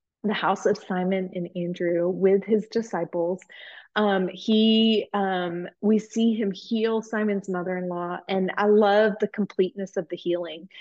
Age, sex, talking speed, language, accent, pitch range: 20-39, female, 145 wpm, English, American, 185-215 Hz